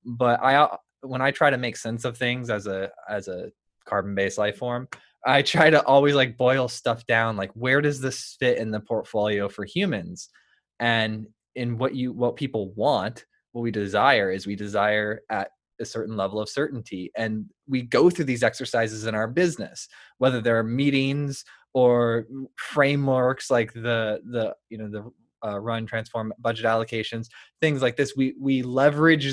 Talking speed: 175 wpm